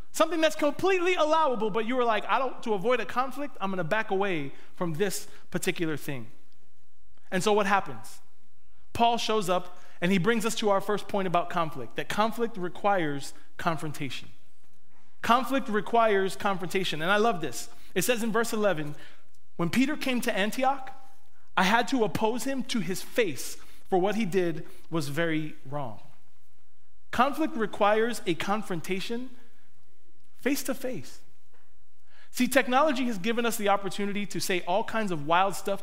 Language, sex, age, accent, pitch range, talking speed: English, male, 30-49, American, 165-230 Hz, 160 wpm